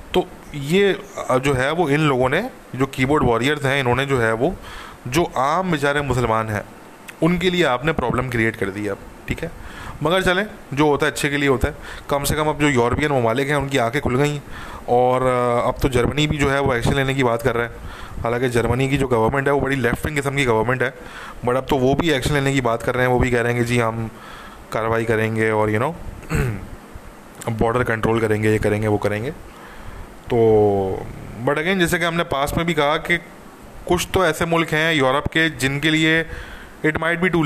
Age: 20-39